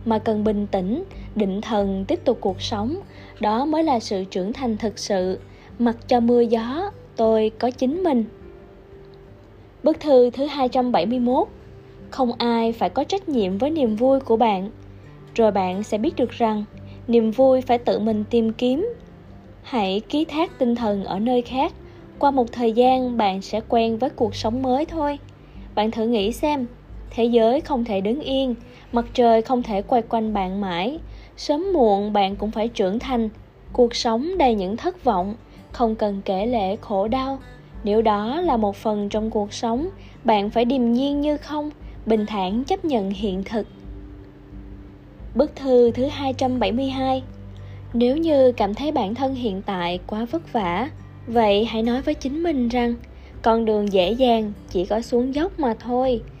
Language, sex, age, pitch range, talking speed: Vietnamese, female, 20-39, 210-260 Hz, 175 wpm